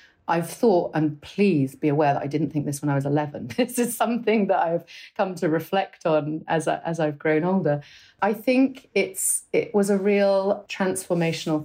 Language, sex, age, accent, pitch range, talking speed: English, female, 30-49, British, 150-190 Hz, 195 wpm